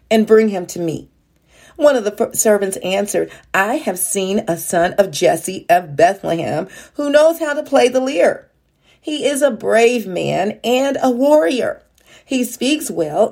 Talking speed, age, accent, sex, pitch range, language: 165 wpm, 40-59, American, female, 175-245 Hz, English